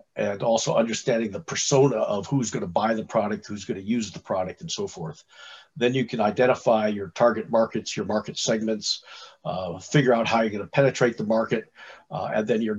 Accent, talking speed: American, 195 wpm